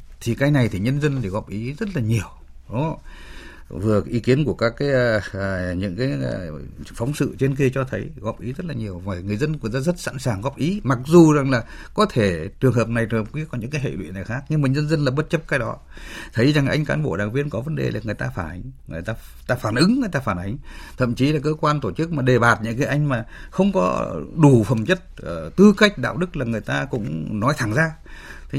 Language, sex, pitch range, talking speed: Vietnamese, male, 110-170 Hz, 265 wpm